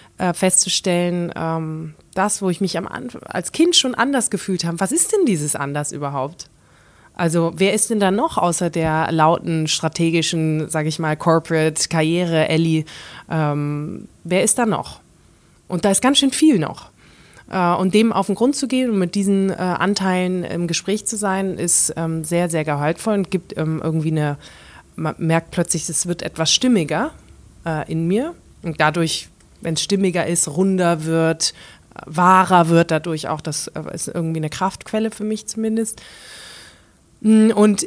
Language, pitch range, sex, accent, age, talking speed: German, 160-195 Hz, female, German, 20-39, 165 wpm